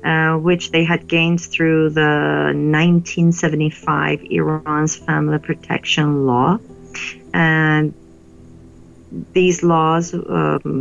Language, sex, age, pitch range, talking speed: Hebrew, female, 40-59, 140-170 Hz, 90 wpm